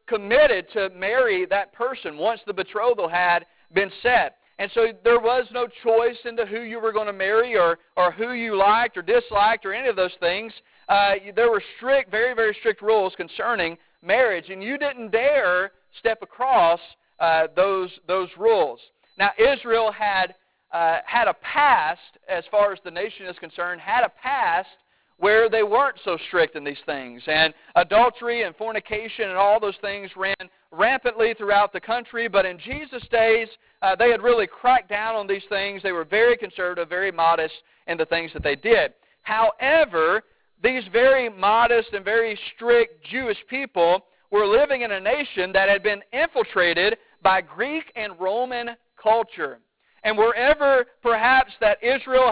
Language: English